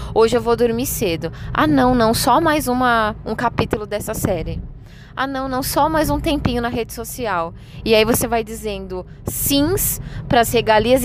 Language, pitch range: Portuguese, 205-265 Hz